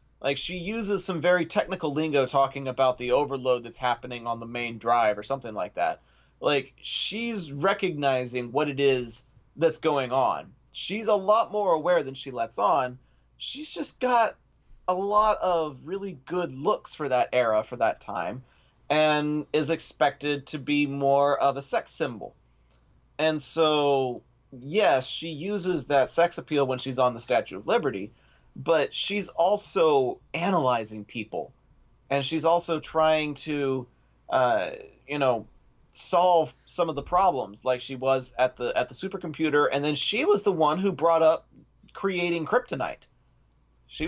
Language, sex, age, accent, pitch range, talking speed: English, male, 30-49, American, 130-180 Hz, 160 wpm